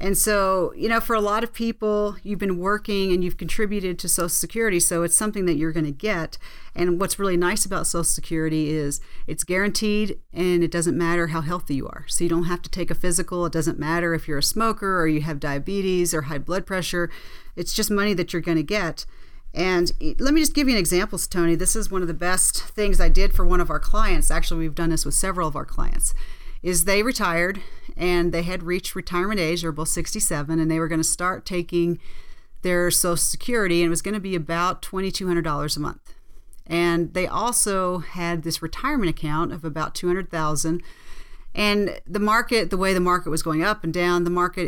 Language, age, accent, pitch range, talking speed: English, 40-59, American, 165-195 Hz, 215 wpm